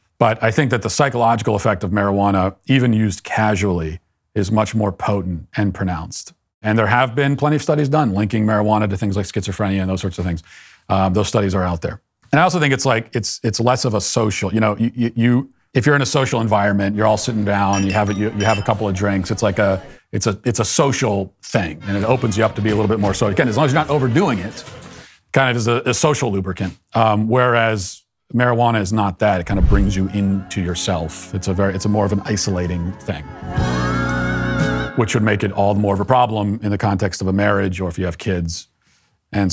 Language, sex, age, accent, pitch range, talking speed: English, male, 40-59, American, 95-115 Hz, 245 wpm